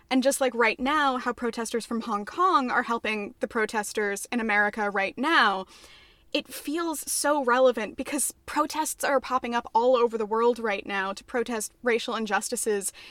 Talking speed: 170 wpm